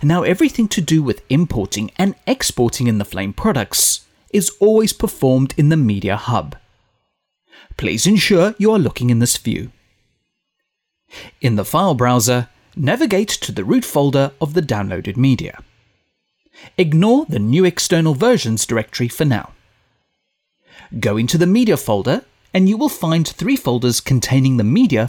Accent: British